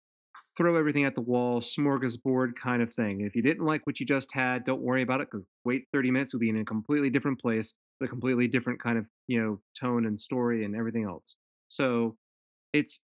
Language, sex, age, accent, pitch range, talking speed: English, male, 30-49, American, 110-140 Hz, 225 wpm